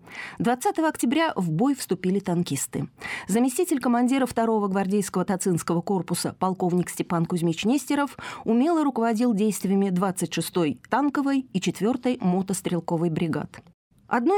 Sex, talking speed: female, 110 wpm